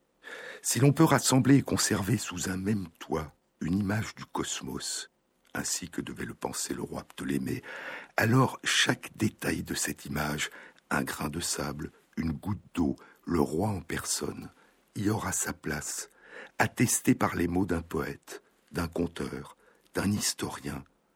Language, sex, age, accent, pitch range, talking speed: French, male, 60-79, French, 75-115 Hz, 150 wpm